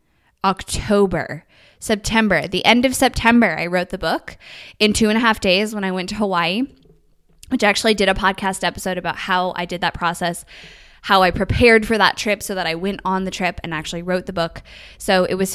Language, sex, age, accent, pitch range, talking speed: English, female, 10-29, American, 180-215 Hz, 210 wpm